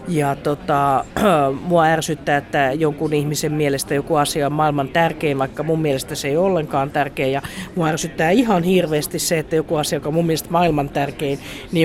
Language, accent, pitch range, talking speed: Finnish, native, 150-185 Hz, 185 wpm